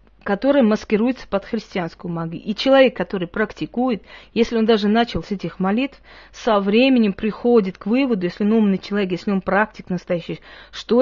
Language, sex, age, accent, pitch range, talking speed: Russian, female, 40-59, native, 190-240 Hz, 165 wpm